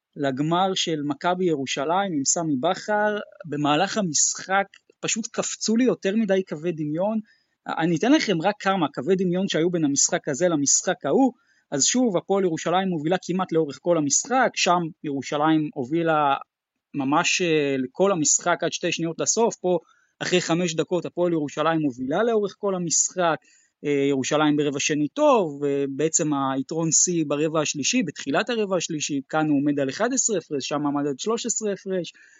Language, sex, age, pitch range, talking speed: Hebrew, male, 20-39, 155-205 Hz, 150 wpm